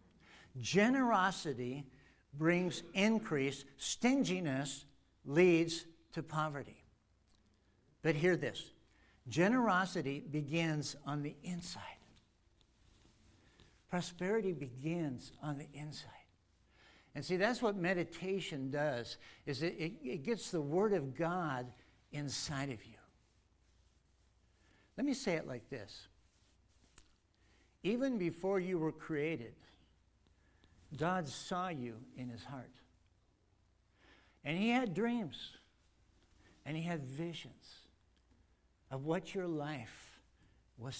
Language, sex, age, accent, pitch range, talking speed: English, male, 60-79, American, 110-175 Hz, 100 wpm